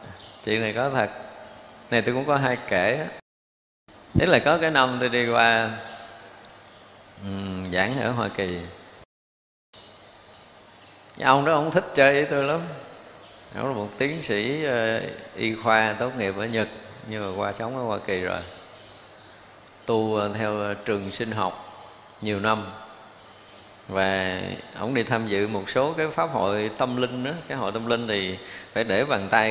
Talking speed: 165 wpm